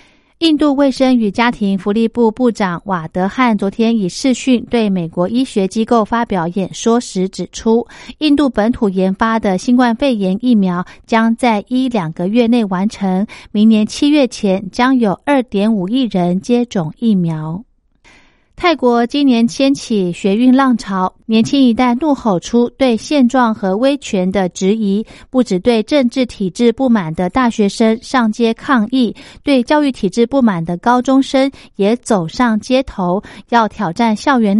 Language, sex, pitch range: Chinese, female, 195-255 Hz